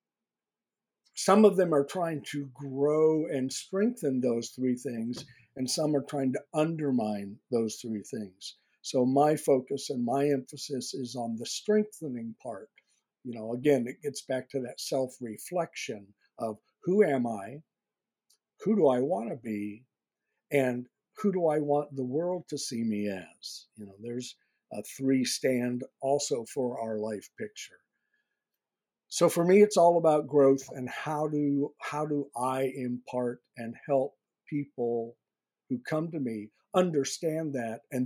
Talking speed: 150 wpm